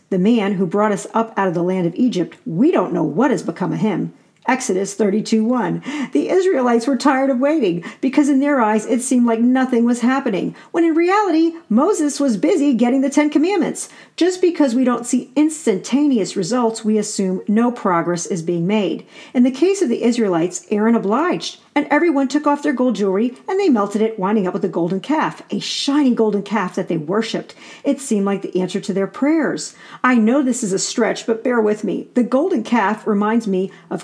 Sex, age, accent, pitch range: female, 50-69, American, 200-280 Hz